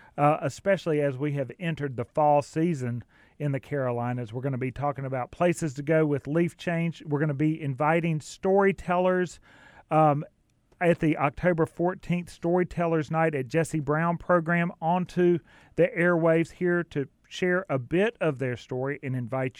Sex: male